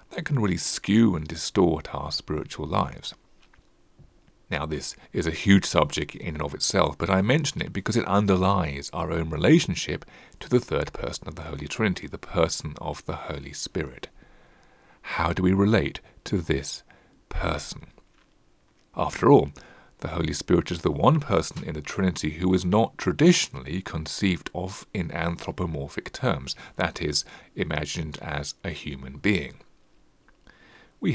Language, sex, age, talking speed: English, male, 40-59, 150 wpm